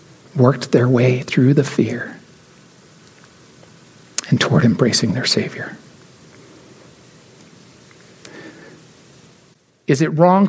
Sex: male